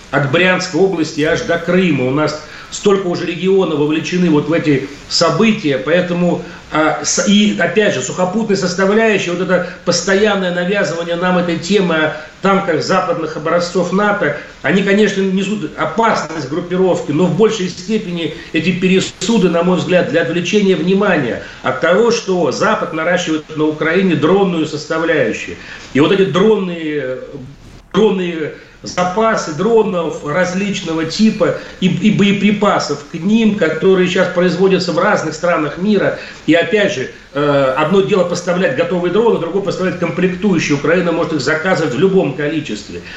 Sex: male